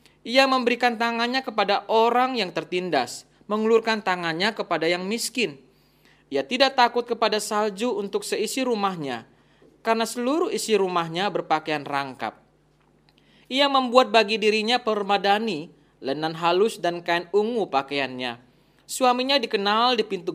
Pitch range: 160-230 Hz